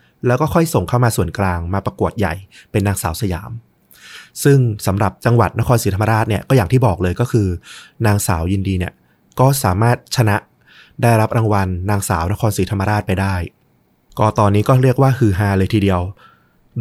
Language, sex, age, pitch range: Thai, male, 20-39, 95-120 Hz